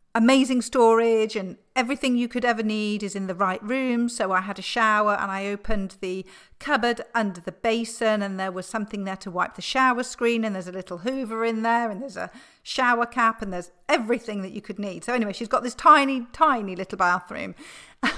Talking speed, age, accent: 215 wpm, 40-59, British